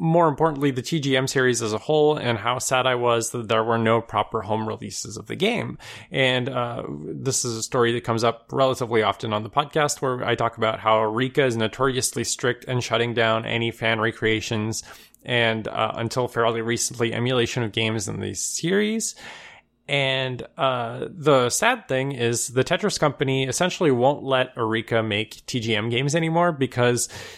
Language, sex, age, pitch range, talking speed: English, male, 20-39, 115-140 Hz, 180 wpm